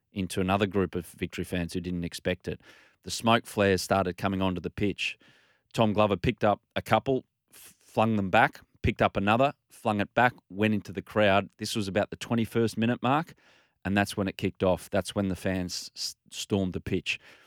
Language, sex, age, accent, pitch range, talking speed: English, male, 30-49, Australian, 95-115 Hz, 195 wpm